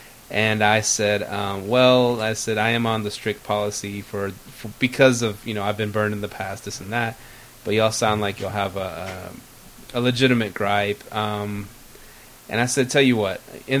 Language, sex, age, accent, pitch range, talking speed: English, male, 20-39, American, 105-125 Hz, 210 wpm